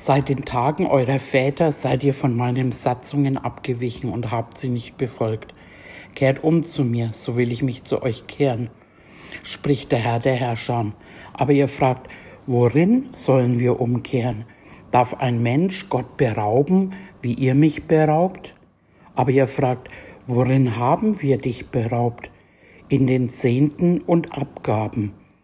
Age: 60-79